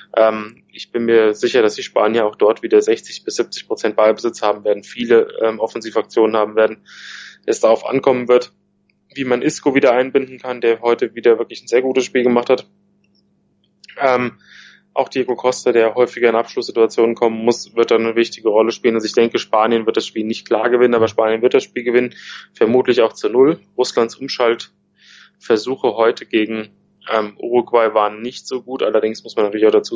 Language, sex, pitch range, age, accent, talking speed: German, male, 110-125 Hz, 20-39, German, 190 wpm